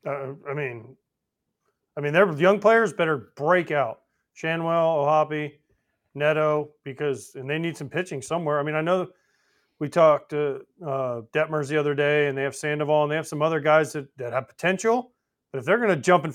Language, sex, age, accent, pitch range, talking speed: English, male, 30-49, American, 150-195 Hz, 200 wpm